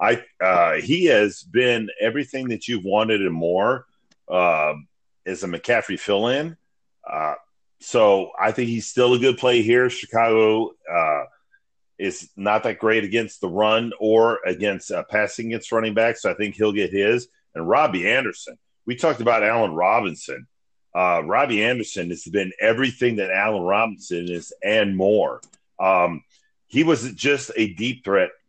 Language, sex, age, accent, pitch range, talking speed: English, male, 40-59, American, 105-130 Hz, 160 wpm